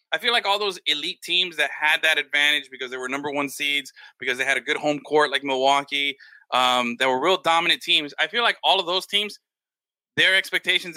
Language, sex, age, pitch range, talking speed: English, male, 20-39, 150-215 Hz, 225 wpm